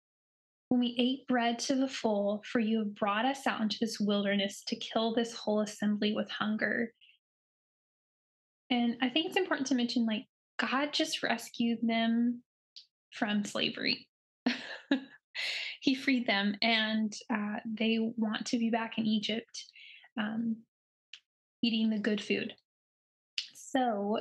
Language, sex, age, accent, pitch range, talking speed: English, female, 10-29, American, 220-250 Hz, 135 wpm